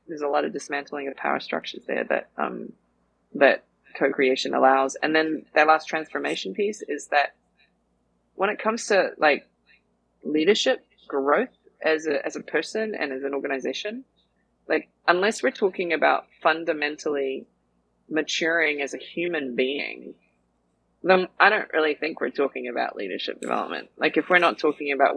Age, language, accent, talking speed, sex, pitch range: 20-39, English, Australian, 155 wpm, female, 140-200 Hz